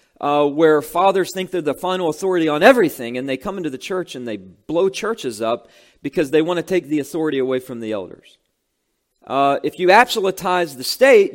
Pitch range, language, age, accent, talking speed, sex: 130-185 Hz, English, 40-59, American, 200 wpm, male